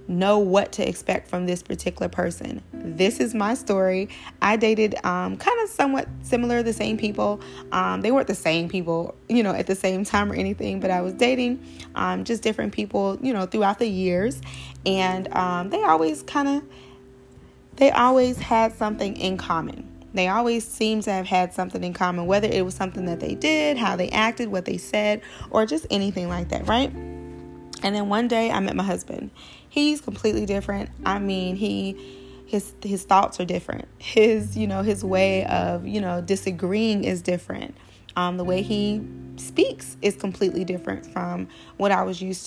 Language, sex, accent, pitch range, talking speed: English, female, American, 180-220 Hz, 185 wpm